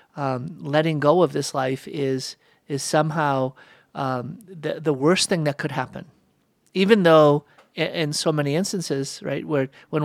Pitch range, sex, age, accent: 140-170 Hz, male, 50-69, American